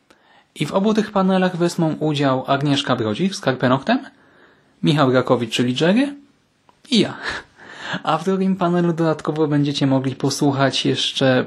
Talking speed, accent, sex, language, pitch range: 140 wpm, native, male, Polish, 130-175 Hz